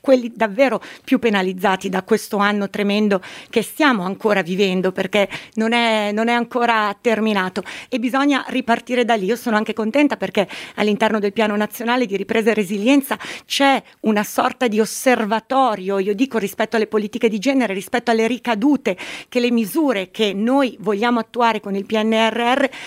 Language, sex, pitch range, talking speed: Italian, female, 215-265 Hz, 160 wpm